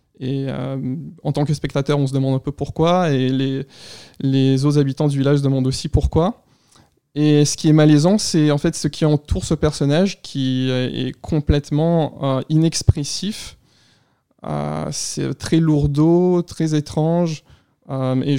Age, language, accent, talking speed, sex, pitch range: 20-39, French, French, 160 wpm, male, 140-160 Hz